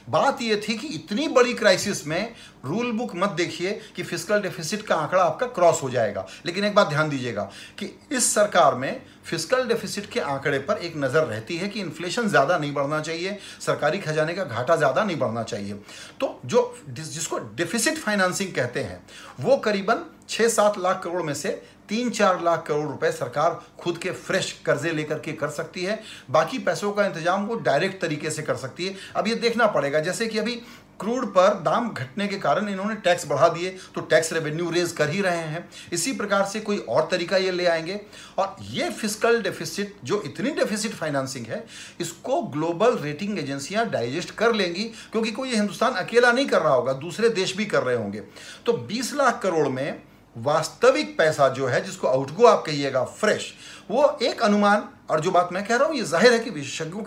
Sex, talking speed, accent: male, 195 wpm, native